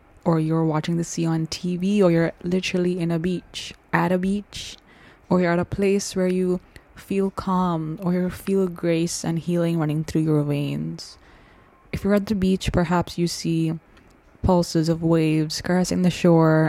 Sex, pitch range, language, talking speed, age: female, 155-180 Hz, English, 175 wpm, 20-39